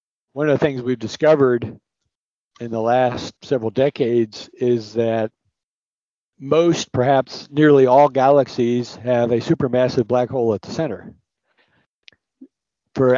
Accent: American